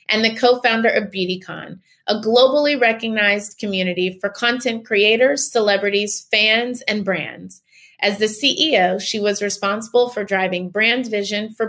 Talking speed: 140 wpm